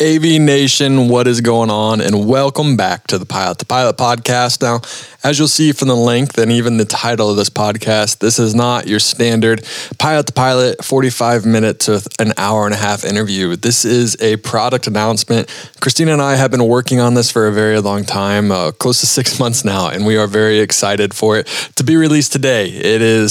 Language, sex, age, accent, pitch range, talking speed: English, male, 20-39, American, 105-125 Hz, 215 wpm